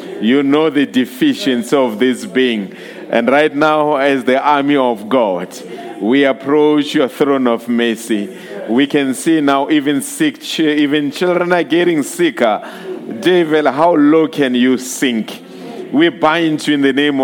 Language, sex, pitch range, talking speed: English, male, 140-170 Hz, 150 wpm